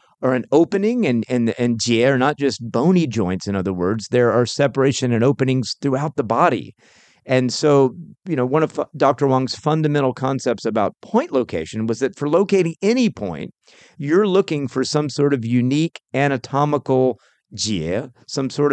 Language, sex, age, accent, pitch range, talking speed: English, male, 40-59, American, 115-145 Hz, 170 wpm